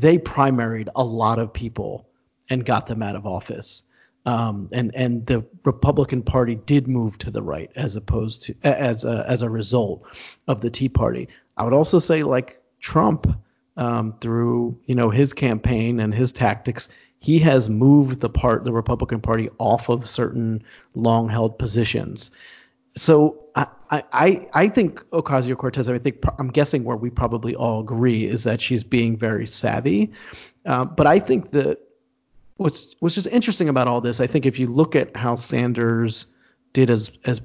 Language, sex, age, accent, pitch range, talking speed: English, male, 40-59, American, 115-140 Hz, 175 wpm